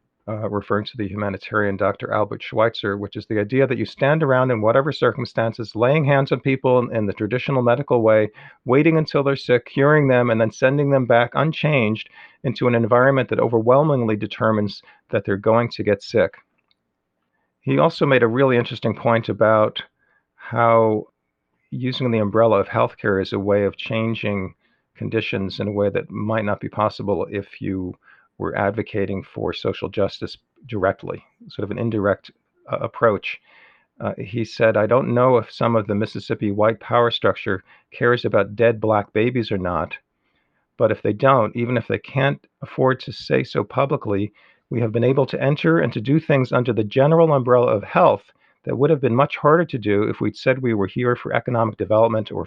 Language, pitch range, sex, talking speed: English, 105-130 Hz, male, 185 wpm